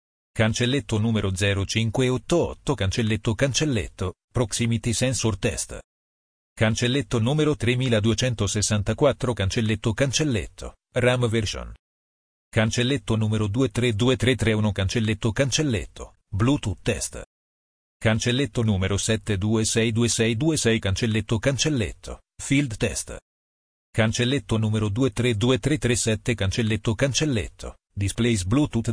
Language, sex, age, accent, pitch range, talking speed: Italian, male, 40-59, native, 100-120 Hz, 75 wpm